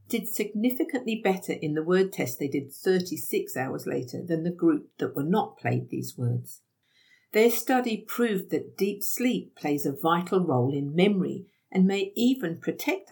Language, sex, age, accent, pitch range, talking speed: English, female, 50-69, British, 150-215 Hz, 170 wpm